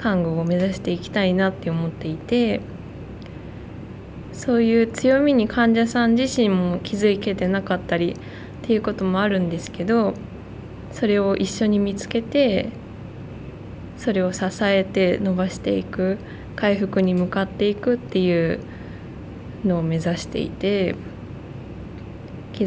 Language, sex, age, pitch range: Japanese, female, 20-39, 175-220 Hz